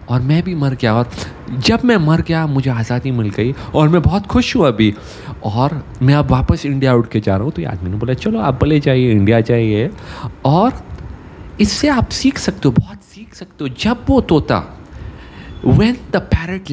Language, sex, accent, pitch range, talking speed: English, male, Indian, 115-185 Hz, 185 wpm